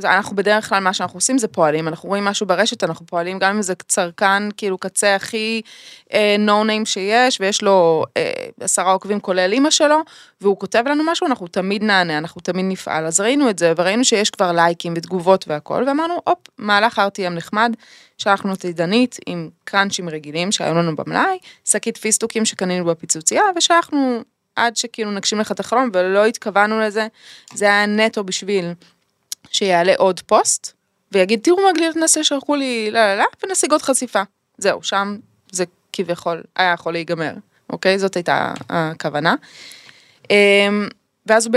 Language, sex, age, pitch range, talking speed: Hebrew, female, 20-39, 180-230 Hz, 160 wpm